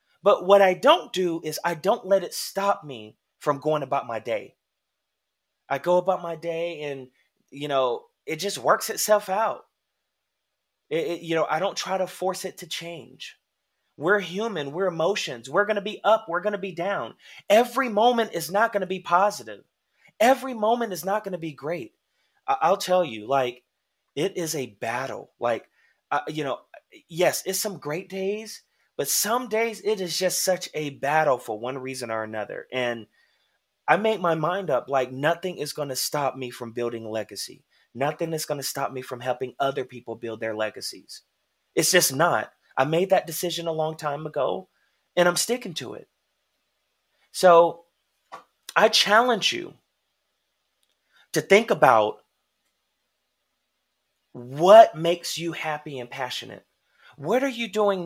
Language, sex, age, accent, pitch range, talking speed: English, male, 30-49, American, 140-200 Hz, 170 wpm